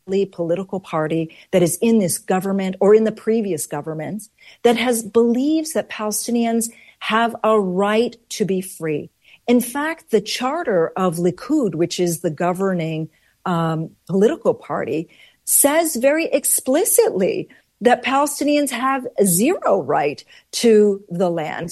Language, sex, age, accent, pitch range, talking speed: English, female, 40-59, American, 175-230 Hz, 130 wpm